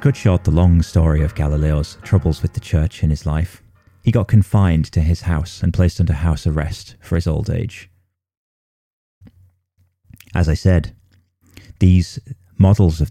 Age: 30-49